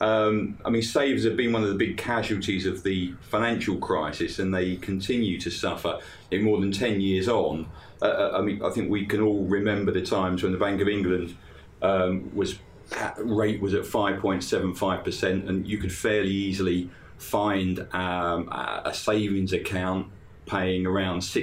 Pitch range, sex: 95-105 Hz, male